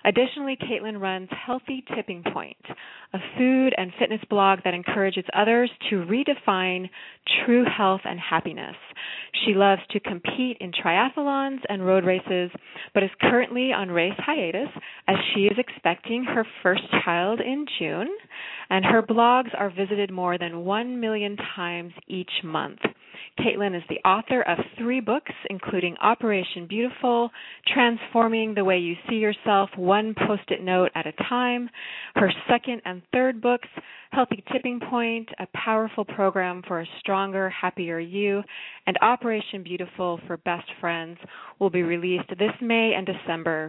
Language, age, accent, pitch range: English, 30-49, American, 180-235 Hz